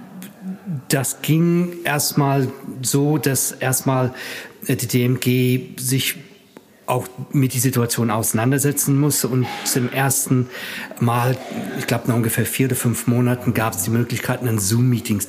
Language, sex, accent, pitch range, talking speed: German, male, German, 115-140 Hz, 130 wpm